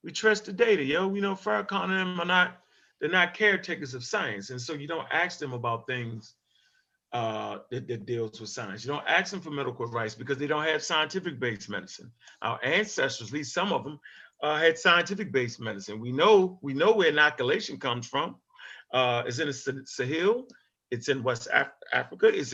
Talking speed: 190 wpm